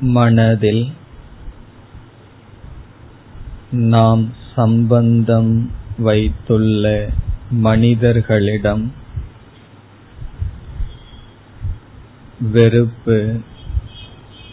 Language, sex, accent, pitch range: Tamil, male, native, 105-115 Hz